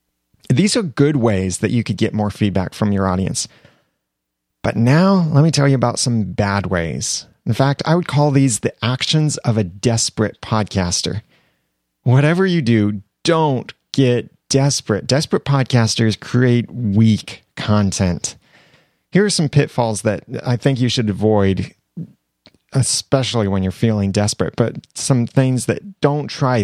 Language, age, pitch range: English, 30-49, 105-150 Hz